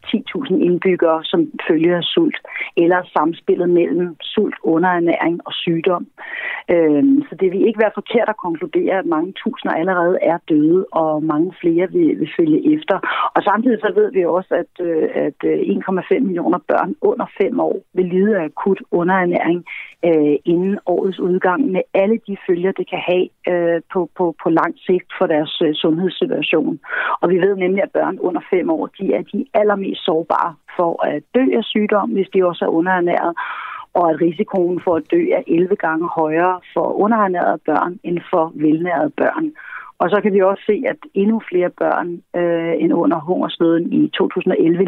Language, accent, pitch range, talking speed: Danish, native, 170-235 Hz, 165 wpm